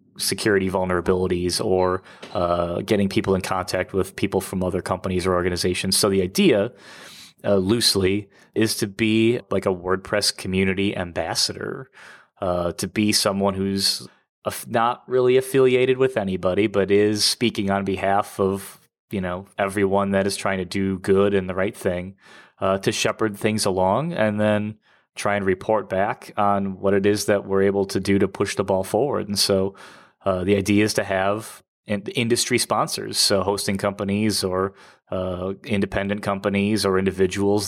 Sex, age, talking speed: male, 30-49, 160 wpm